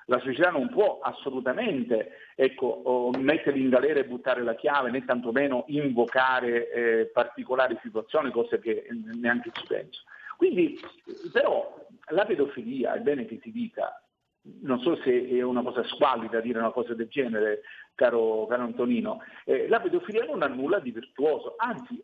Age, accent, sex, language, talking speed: 50-69, native, male, Italian, 155 wpm